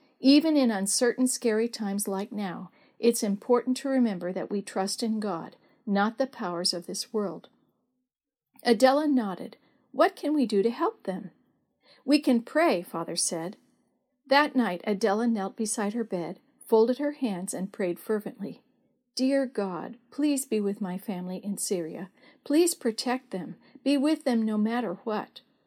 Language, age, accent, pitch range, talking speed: English, 50-69, American, 200-260 Hz, 155 wpm